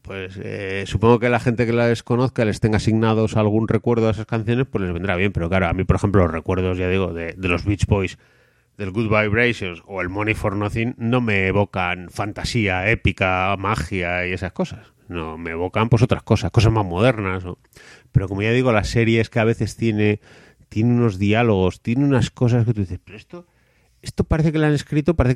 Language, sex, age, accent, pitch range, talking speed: English, male, 30-49, Spanish, 95-120 Hz, 220 wpm